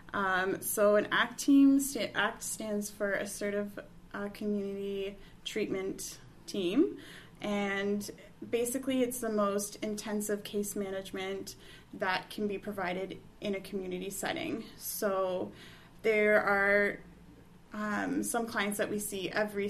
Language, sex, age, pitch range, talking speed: English, female, 10-29, 190-215 Hz, 120 wpm